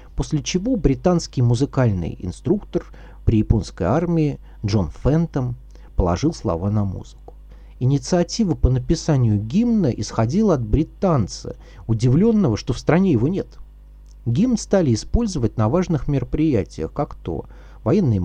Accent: native